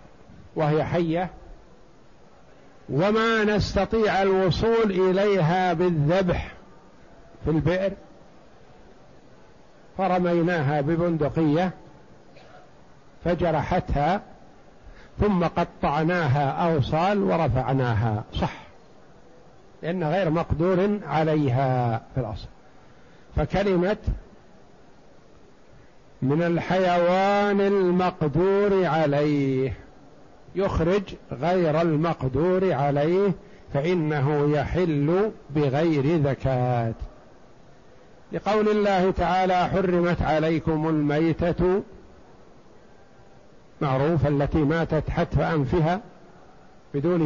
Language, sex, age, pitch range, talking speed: Arabic, male, 50-69, 150-180 Hz, 60 wpm